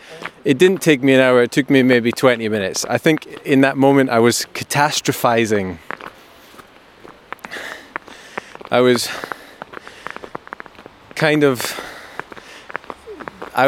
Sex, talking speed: male, 110 wpm